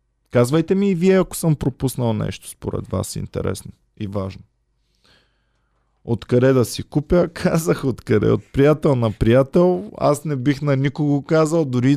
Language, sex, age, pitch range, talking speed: Bulgarian, male, 20-39, 115-150 Hz, 150 wpm